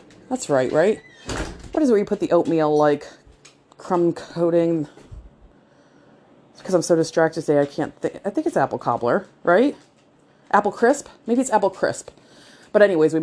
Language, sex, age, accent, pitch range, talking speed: English, female, 30-49, American, 145-190 Hz, 170 wpm